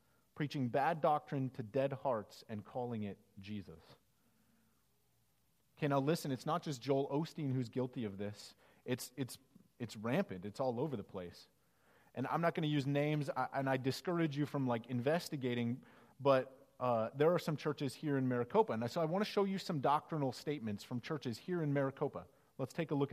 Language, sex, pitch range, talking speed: English, male, 125-175 Hz, 190 wpm